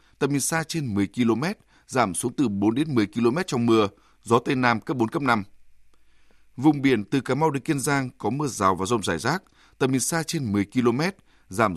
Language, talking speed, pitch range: Vietnamese, 225 wpm, 105-140 Hz